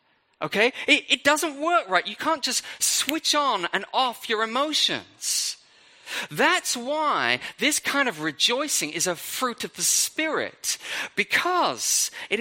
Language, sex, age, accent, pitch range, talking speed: English, male, 30-49, British, 185-300 Hz, 140 wpm